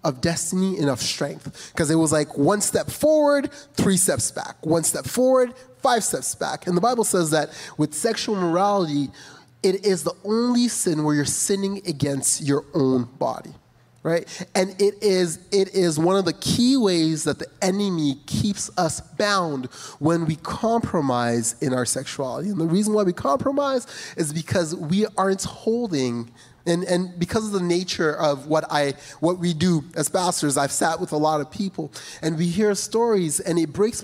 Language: English